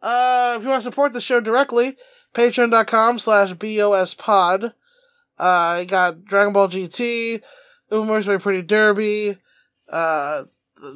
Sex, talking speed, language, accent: male, 125 wpm, English, American